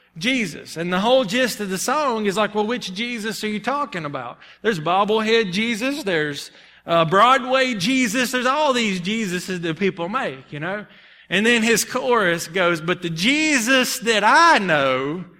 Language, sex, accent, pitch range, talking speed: English, male, American, 160-235 Hz, 170 wpm